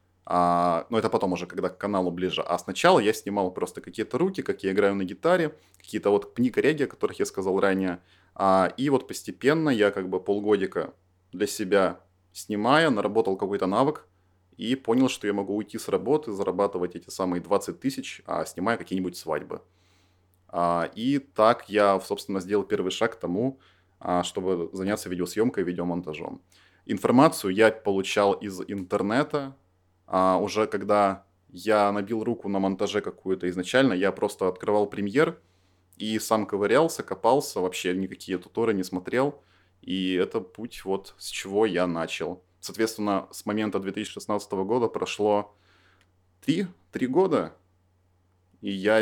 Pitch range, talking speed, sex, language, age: 90-105 Hz, 140 wpm, male, Russian, 20-39